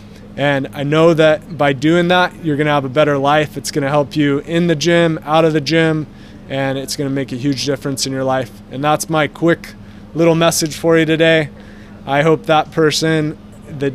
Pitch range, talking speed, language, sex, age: 120-150 Hz, 205 wpm, English, male, 20-39